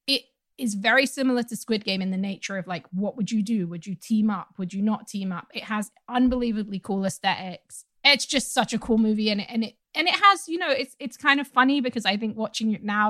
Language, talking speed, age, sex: English, 250 wpm, 20-39, female